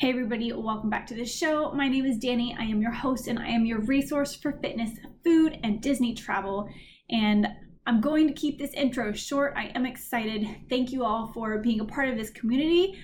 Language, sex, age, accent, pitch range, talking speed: English, female, 20-39, American, 215-270 Hz, 215 wpm